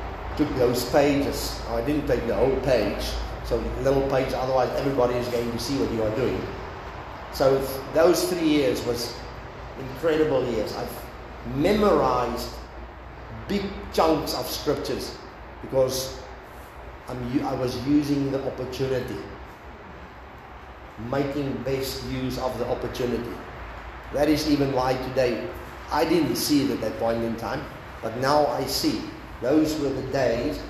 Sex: male